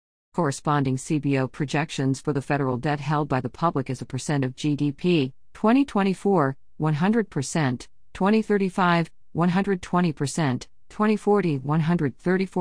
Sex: female